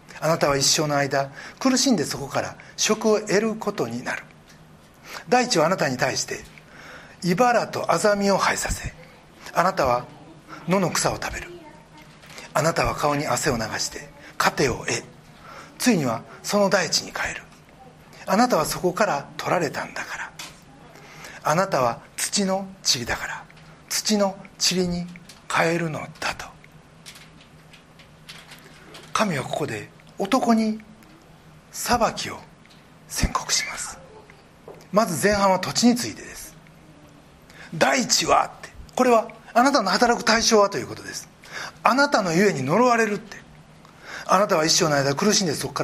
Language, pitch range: Japanese, 160-225 Hz